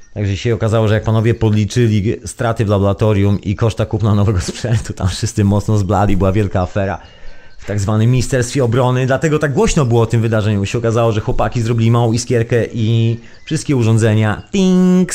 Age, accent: 30-49, native